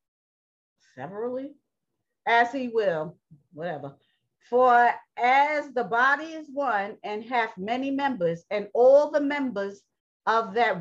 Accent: American